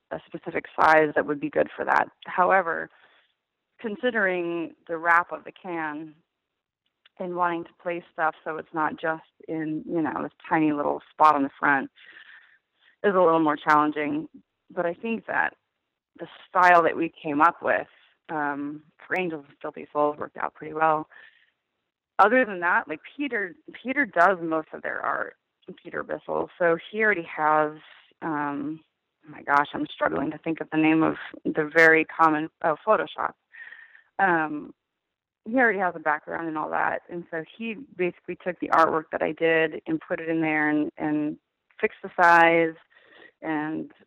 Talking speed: 170 wpm